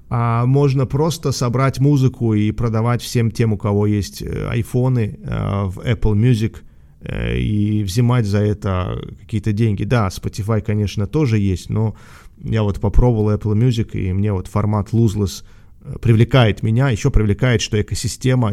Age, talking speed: 30-49, 140 wpm